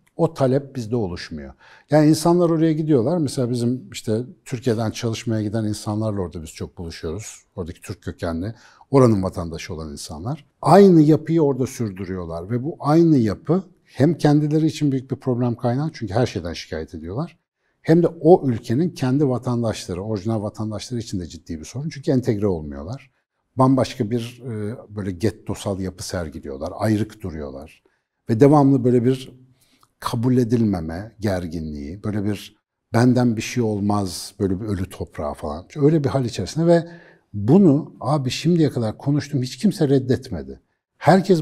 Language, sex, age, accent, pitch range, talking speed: Turkish, male, 60-79, native, 105-155 Hz, 150 wpm